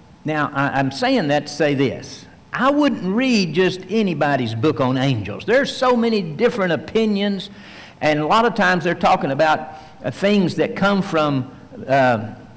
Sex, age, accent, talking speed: male, 60-79, American, 160 wpm